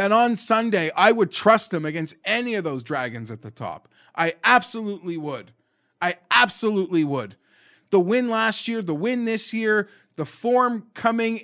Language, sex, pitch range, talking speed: English, male, 175-235 Hz, 170 wpm